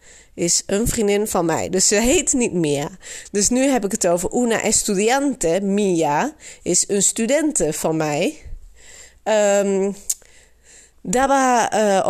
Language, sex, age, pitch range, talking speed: Dutch, female, 30-49, 185-245 Hz, 135 wpm